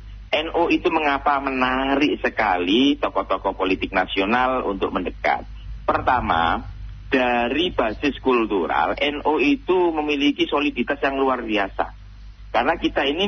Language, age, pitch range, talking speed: Indonesian, 40-59, 105-145 Hz, 110 wpm